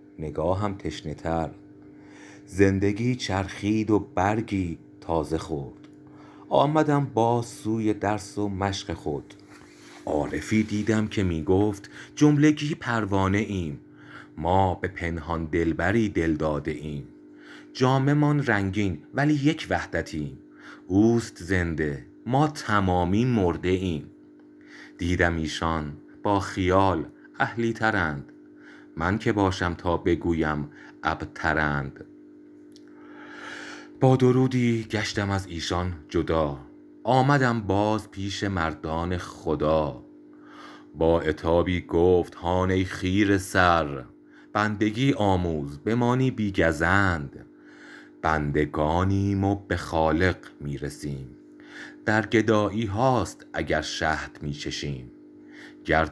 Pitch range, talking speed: 85-120 Hz, 90 wpm